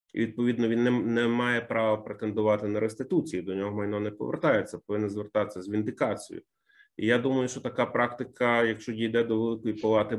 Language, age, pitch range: Ukrainian, 30-49, 100-125 Hz